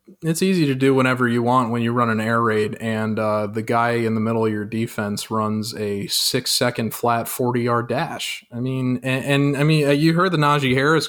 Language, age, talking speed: English, 20-39, 220 wpm